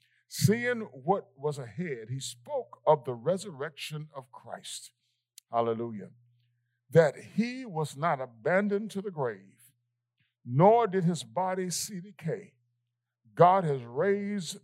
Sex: male